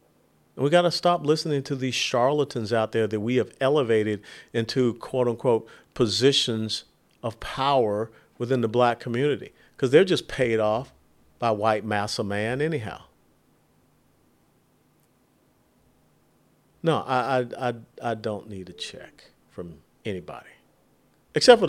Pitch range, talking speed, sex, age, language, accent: 100-125 Hz, 135 wpm, male, 50-69, English, American